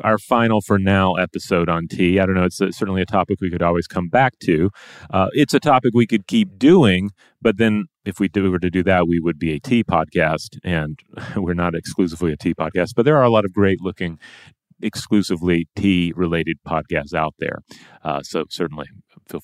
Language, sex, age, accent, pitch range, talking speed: English, male, 30-49, American, 85-100 Hz, 200 wpm